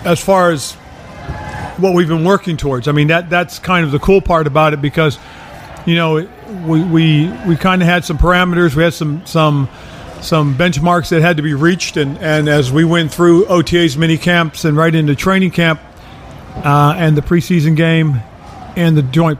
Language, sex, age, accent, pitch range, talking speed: English, male, 50-69, American, 150-175 Hz, 195 wpm